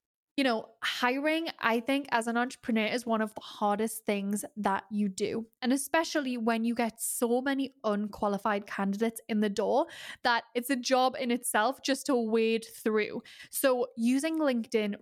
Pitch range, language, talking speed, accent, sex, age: 220-265 Hz, English, 170 wpm, British, female, 10-29